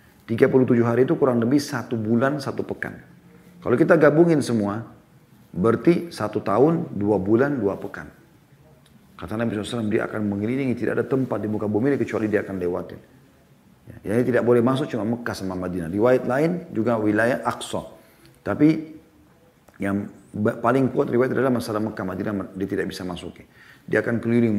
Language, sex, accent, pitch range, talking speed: Indonesian, male, native, 100-125 Hz, 170 wpm